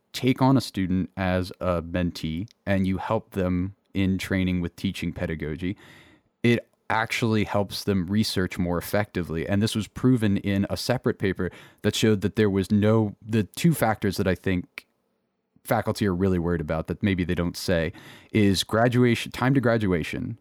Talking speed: 170 wpm